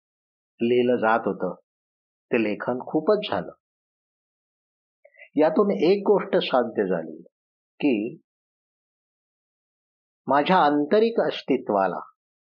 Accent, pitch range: native, 115-185 Hz